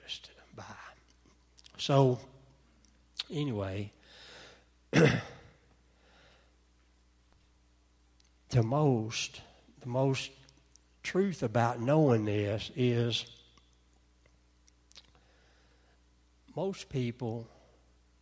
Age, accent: 60-79, American